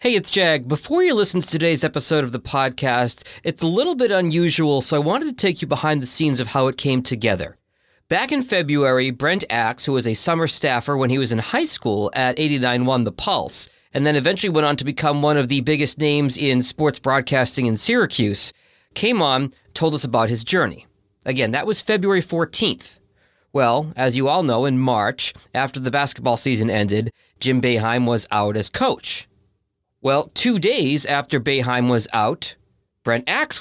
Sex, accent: male, American